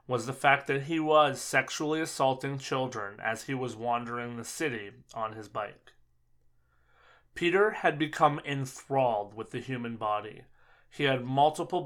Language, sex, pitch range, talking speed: English, male, 120-150 Hz, 145 wpm